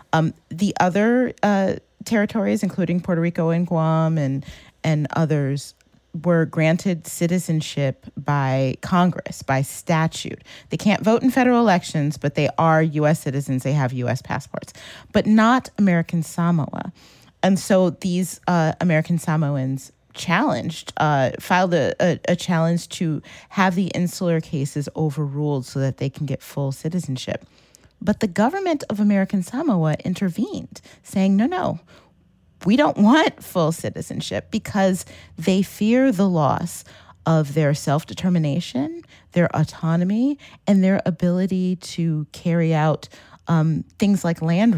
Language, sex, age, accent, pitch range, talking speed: English, female, 30-49, American, 145-180 Hz, 135 wpm